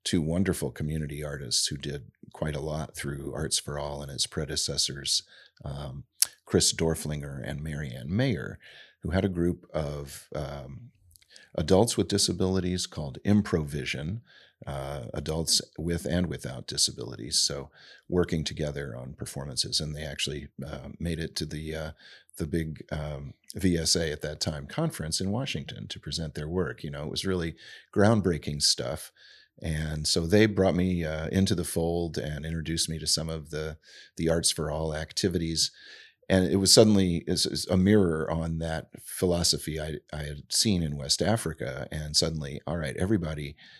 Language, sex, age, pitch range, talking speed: English, male, 40-59, 75-90 Hz, 160 wpm